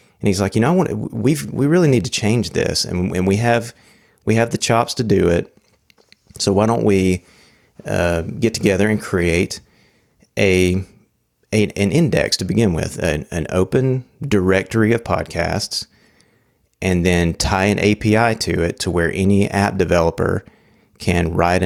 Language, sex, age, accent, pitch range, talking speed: English, male, 30-49, American, 90-105 Hz, 170 wpm